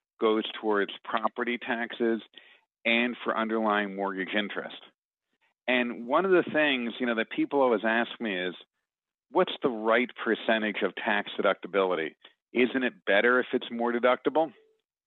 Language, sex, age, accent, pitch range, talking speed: English, male, 50-69, American, 105-125 Hz, 145 wpm